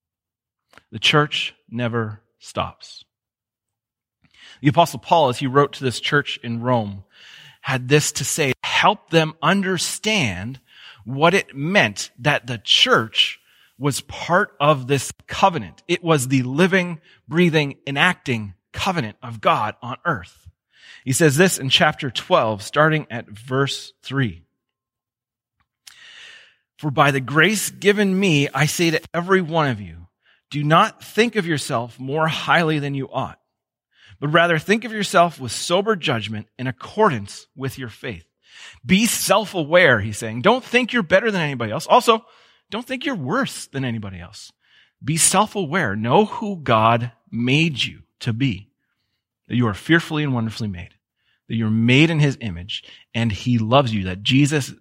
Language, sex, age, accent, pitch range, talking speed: English, male, 30-49, American, 115-165 Hz, 150 wpm